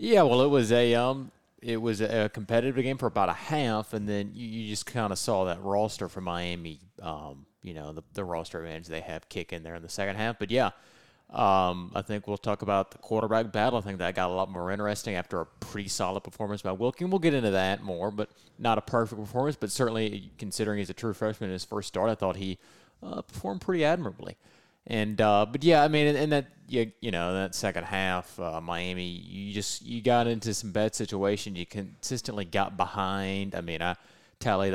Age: 30-49